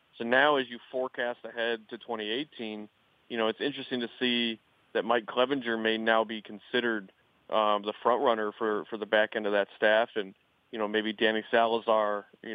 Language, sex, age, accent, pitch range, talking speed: English, male, 30-49, American, 110-120 Hz, 190 wpm